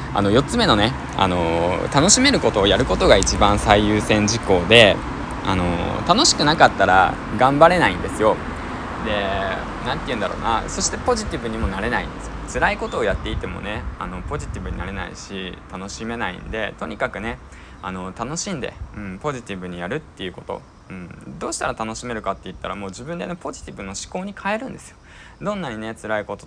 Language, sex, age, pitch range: Japanese, male, 20-39, 95-135 Hz